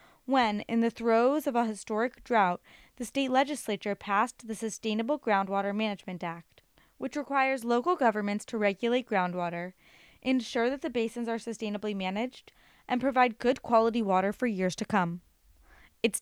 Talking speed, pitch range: 150 wpm, 200-255 Hz